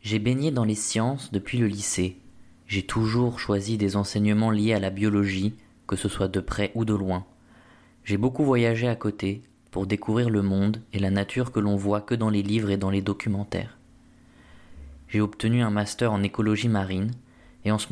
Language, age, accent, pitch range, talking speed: French, 20-39, French, 100-115 Hz, 195 wpm